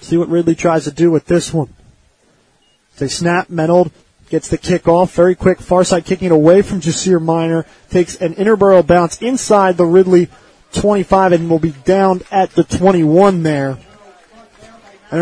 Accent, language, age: American, English, 30-49